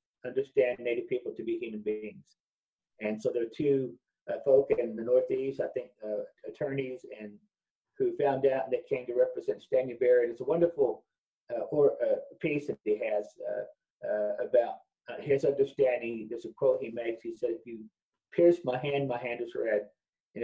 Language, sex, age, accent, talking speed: English, male, 40-59, American, 190 wpm